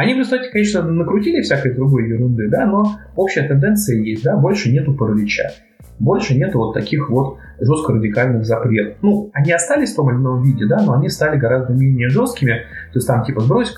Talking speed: 190 wpm